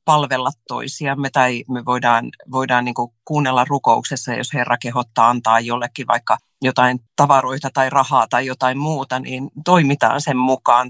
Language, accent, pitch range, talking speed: Finnish, native, 125-150 Hz, 145 wpm